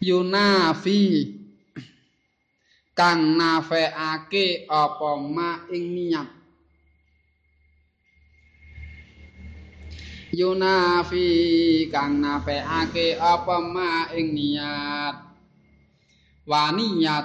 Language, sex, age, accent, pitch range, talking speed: Indonesian, male, 20-39, native, 120-170 Hz, 50 wpm